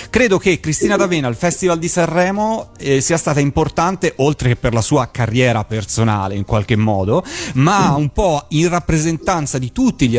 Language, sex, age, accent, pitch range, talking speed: Italian, male, 30-49, native, 120-165 Hz, 175 wpm